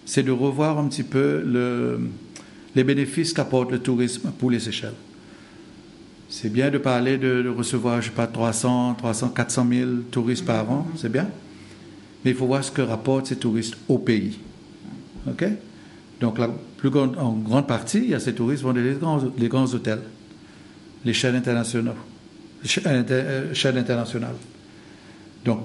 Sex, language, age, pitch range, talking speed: male, French, 60-79, 115-140 Hz, 160 wpm